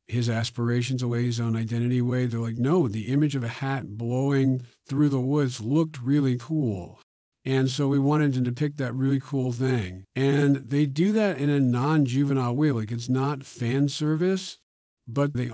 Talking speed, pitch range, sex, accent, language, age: 180 wpm, 115-140 Hz, male, American, English, 50-69